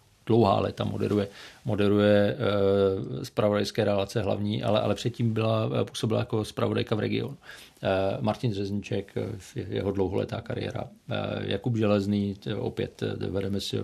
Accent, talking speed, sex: native, 115 wpm, male